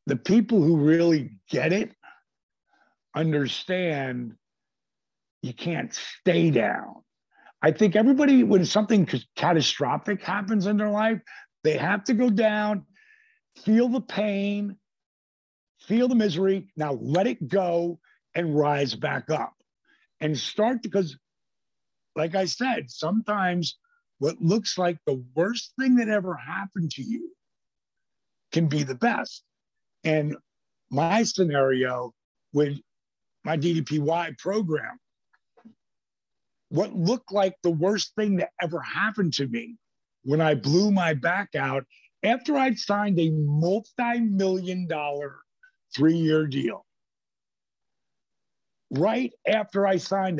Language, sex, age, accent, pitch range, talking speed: English, male, 50-69, American, 150-210 Hz, 115 wpm